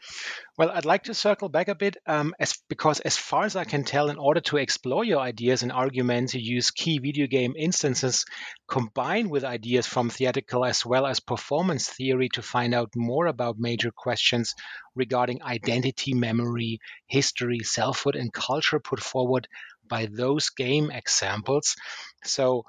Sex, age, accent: male, 30-49, German